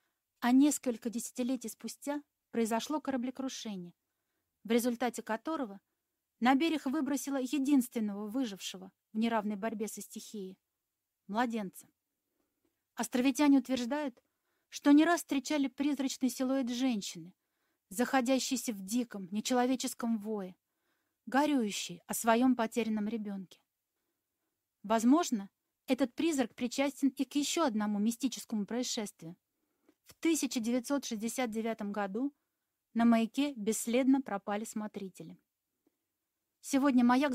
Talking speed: 95 wpm